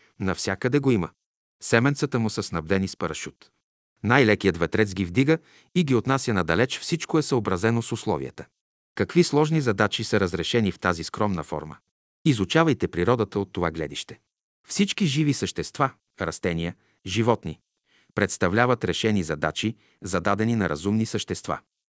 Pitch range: 95-125 Hz